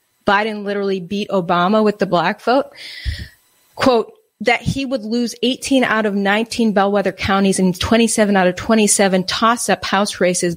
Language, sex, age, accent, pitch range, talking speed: English, female, 30-49, American, 195-240 Hz, 160 wpm